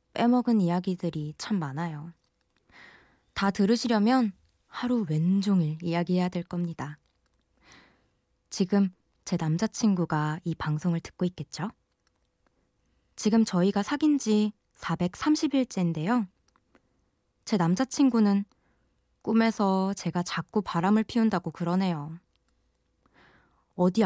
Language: Korean